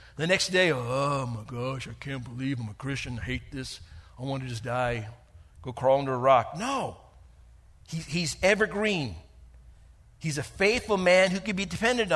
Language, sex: English, male